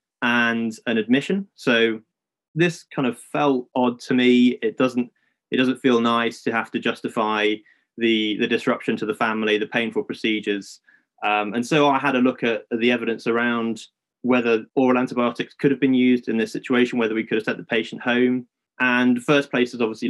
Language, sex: English, male